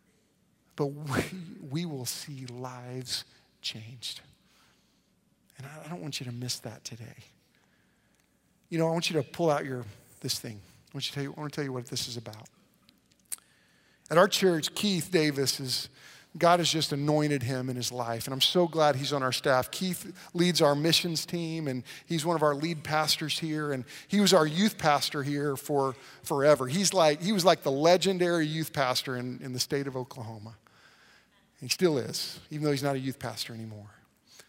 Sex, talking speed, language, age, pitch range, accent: male, 195 wpm, English, 40-59, 140-190 Hz, American